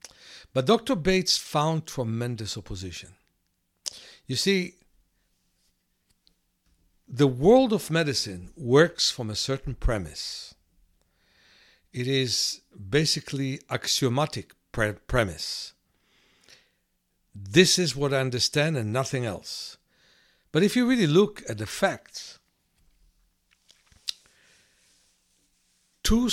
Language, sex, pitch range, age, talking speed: English, male, 105-155 Hz, 60-79, 90 wpm